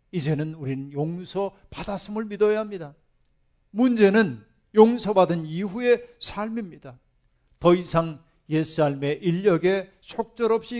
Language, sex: Korean, male